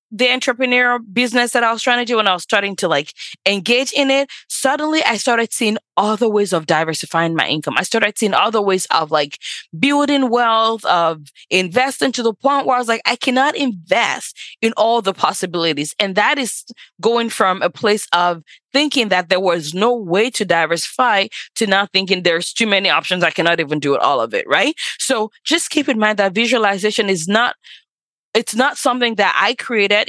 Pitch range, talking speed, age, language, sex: 185-245 Hz, 200 wpm, 20-39, English, female